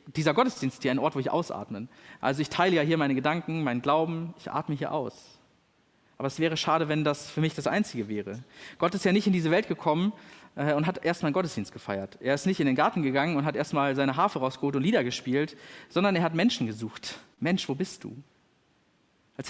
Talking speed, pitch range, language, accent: 220 wpm, 130-170 Hz, German, German